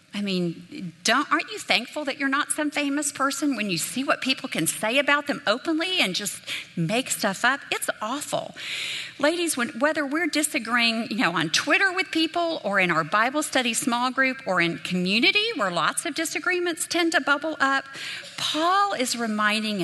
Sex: female